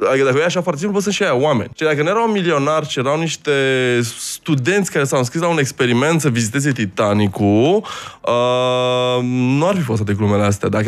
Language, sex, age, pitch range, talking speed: Romanian, male, 20-39, 115-165 Hz, 190 wpm